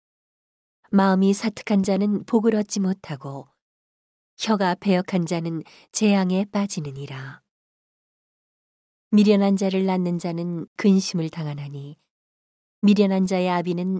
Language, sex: Korean, female